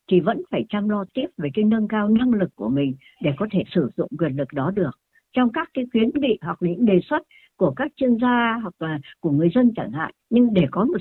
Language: Vietnamese